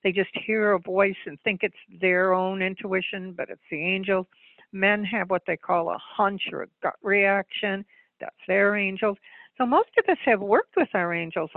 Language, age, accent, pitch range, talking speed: English, 60-79, American, 185-240 Hz, 195 wpm